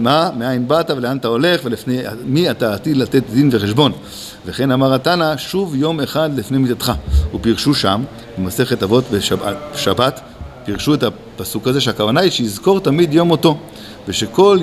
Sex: male